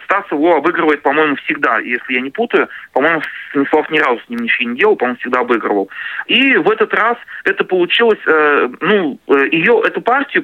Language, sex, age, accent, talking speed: Russian, male, 30-49, native, 185 wpm